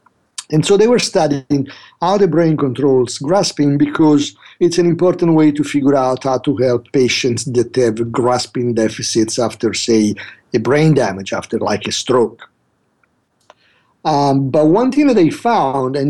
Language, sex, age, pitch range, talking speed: English, male, 50-69, 120-155 Hz, 160 wpm